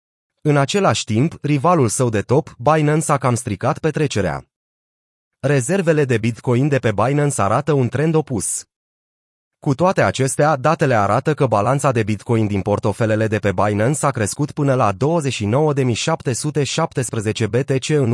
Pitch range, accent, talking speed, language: 115-145 Hz, native, 140 wpm, Romanian